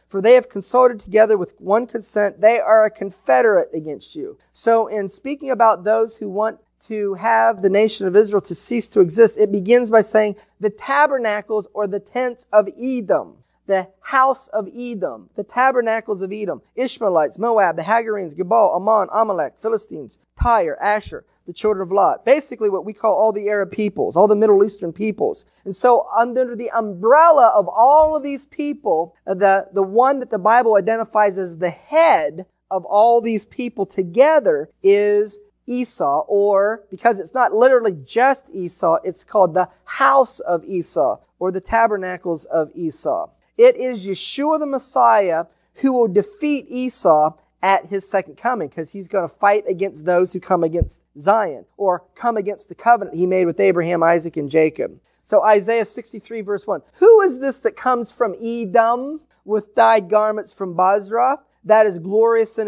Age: 30-49